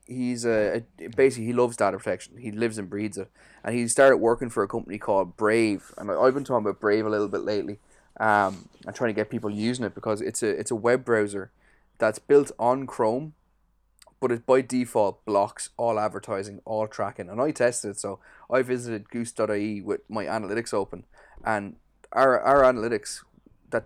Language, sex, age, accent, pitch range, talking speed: English, male, 20-39, Irish, 105-125 Hz, 190 wpm